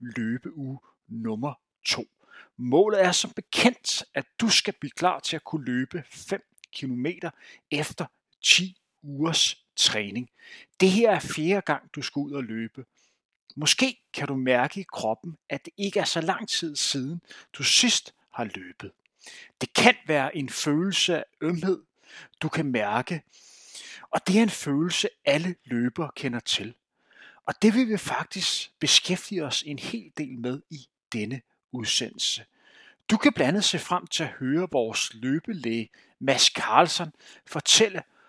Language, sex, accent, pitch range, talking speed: Danish, male, native, 130-185 Hz, 150 wpm